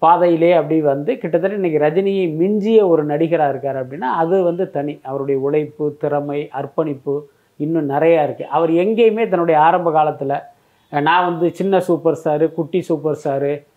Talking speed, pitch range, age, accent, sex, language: 150 wpm, 150-185 Hz, 20-39, native, male, Tamil